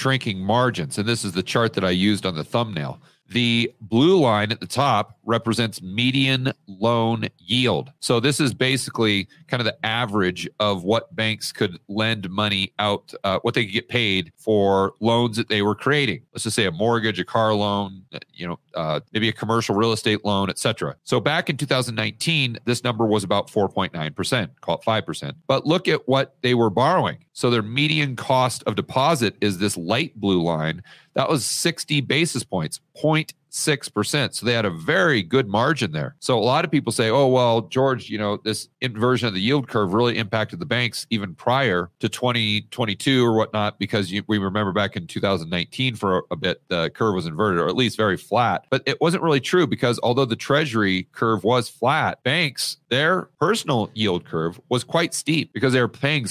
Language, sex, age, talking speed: English, male, 40-59, 195 wpm